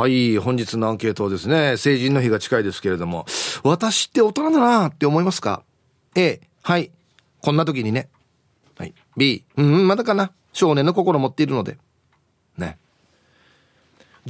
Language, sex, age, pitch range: Japanese, male, 40-59, 115-190 Hz